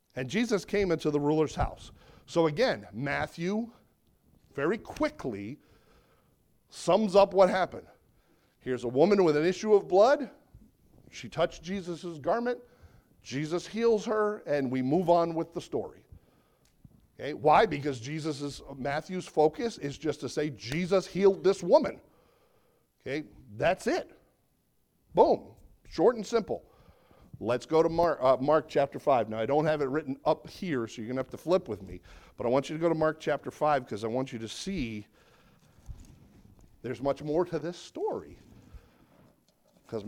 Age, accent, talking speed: 50-69, American, 160 wpm